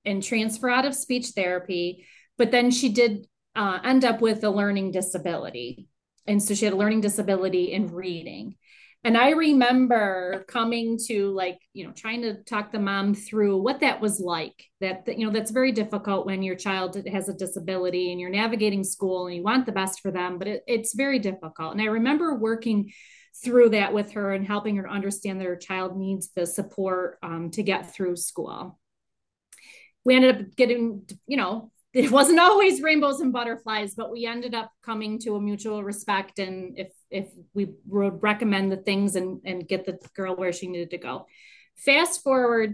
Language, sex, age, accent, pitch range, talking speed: English, female, 30-49, American, 190-230 Hz, 190 wpm